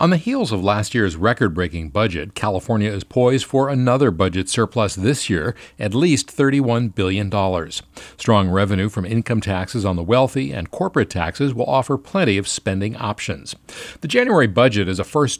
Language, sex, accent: English, male, American